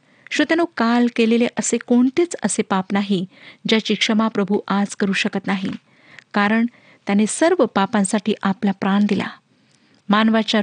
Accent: native